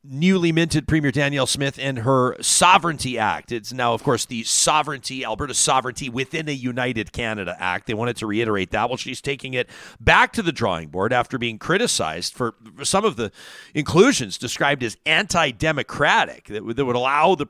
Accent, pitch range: American, 120-160 Hz